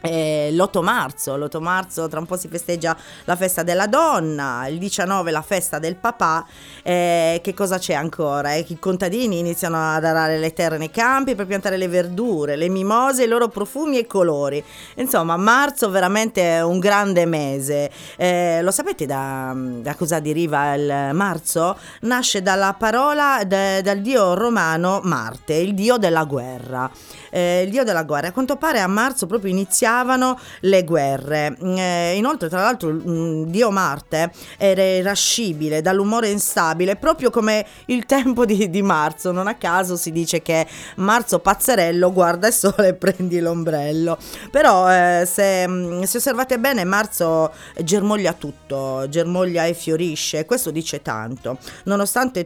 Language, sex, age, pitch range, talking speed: Italian, female, 30-49, 160-200 Hz, 155 wpm